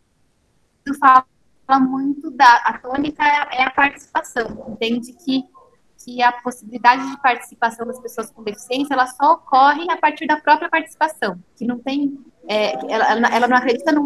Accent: Brazilian